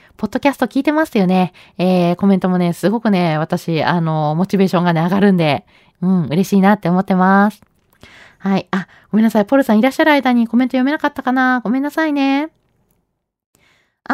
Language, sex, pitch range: Japanese, female, 195-285 Hz